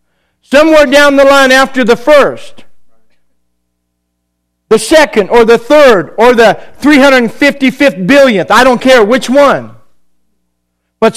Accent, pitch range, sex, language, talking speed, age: American, 215-275 Hz, male, English, 120 wpm, 50-69